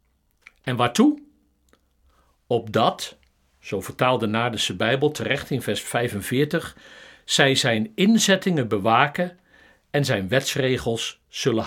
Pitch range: 105-150 Hz